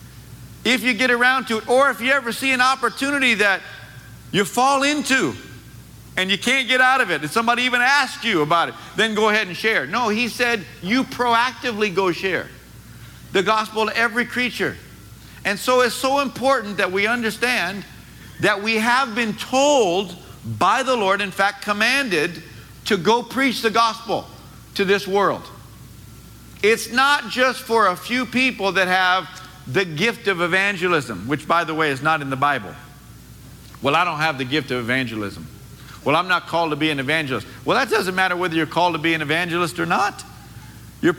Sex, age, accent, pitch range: male, 50-69, American, 175-245 Hz